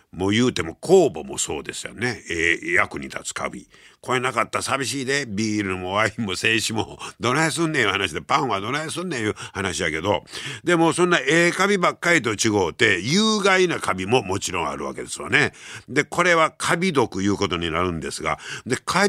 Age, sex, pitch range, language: 50-69, male, 105-170 Hz, Japanese